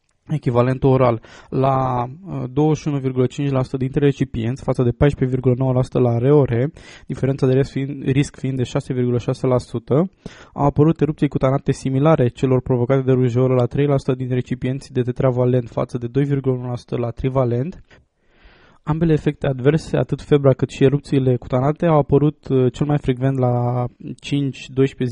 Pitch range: 125-140 Hz